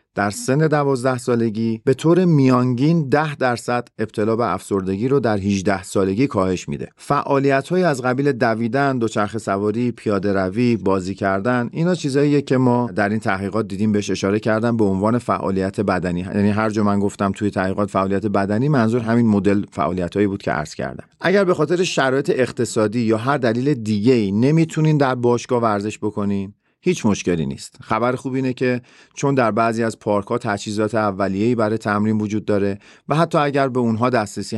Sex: male